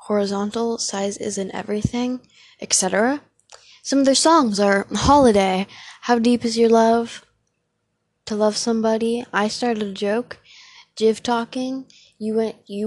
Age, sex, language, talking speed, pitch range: 10-29, female, English, 130 wpm, 190-250 Hz